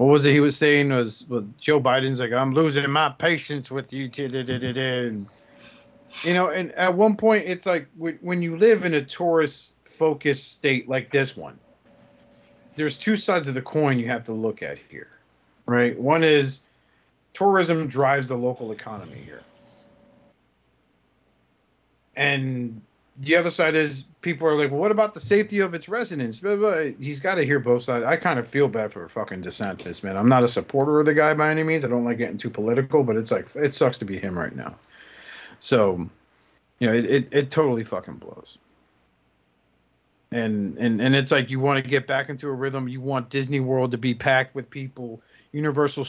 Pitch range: 125-155 Hz